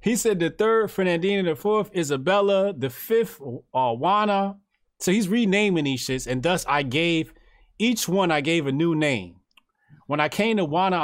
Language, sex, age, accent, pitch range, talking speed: English, male, 30-49, American, 135-170 Hz, 180 wpm